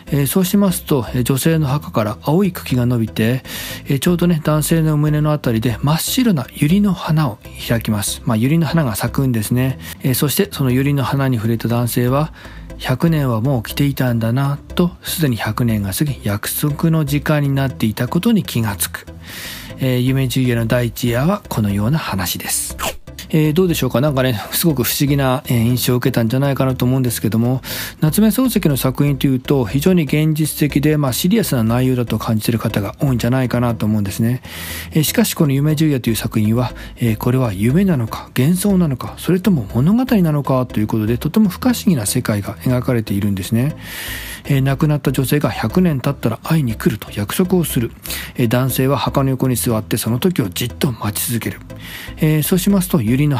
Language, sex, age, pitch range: Japanese, male, 40-59, 115-155 Hz